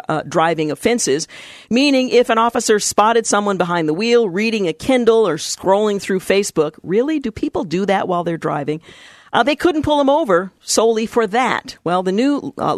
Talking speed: 190 wpm